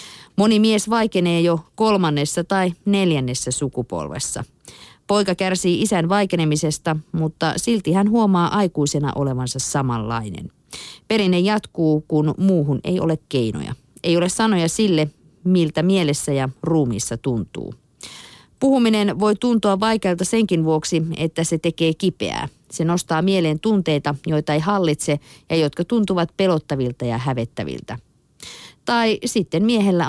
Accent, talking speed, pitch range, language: native, 120 wpm, 150-190 Hz, Finnish